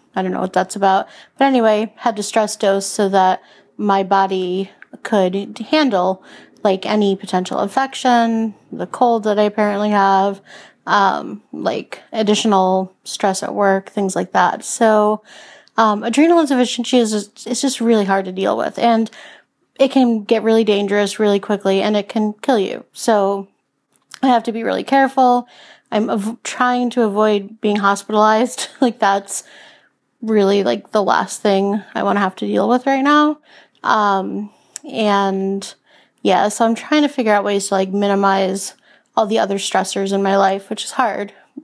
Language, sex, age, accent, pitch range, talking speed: English, female, 30-49, American, 195-235 Hz, 165 wpm